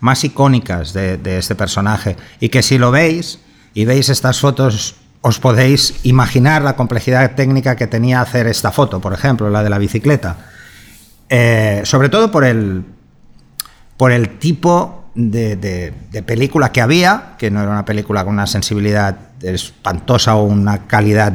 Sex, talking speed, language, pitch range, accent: male, 160 wpm, Spanish, 105-135 Hz, Spanish